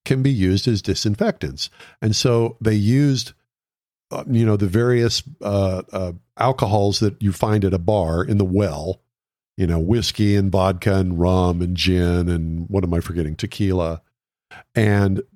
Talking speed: 165 wpm